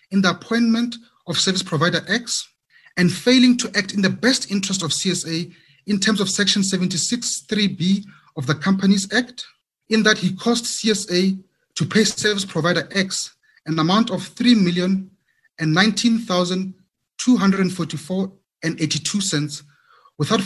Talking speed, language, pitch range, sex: 150 wpm, English, 165-215 Hz, male